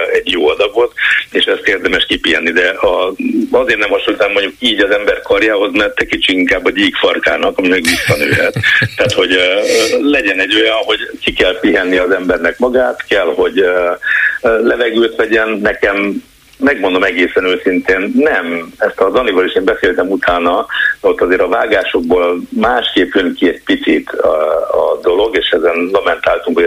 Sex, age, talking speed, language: male, 60-79, 155 wpm, Hungarian